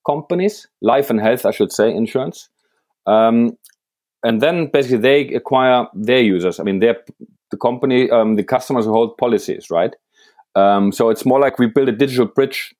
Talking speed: 180 wpm